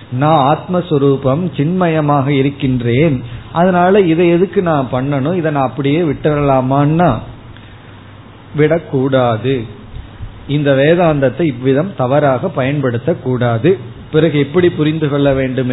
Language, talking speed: Tamil, 90 wpm